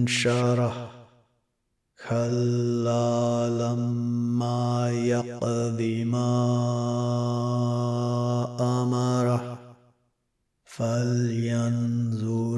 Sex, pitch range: male, 115-120 Hz